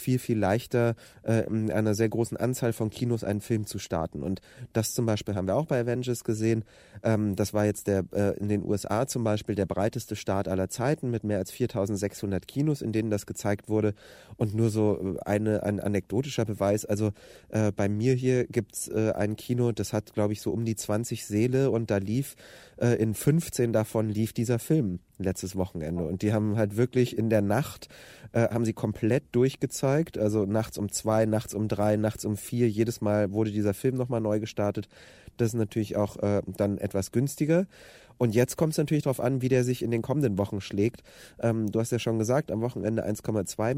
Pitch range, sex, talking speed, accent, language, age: 105-125 Hz, male, 210 wpm, German, German, 30-49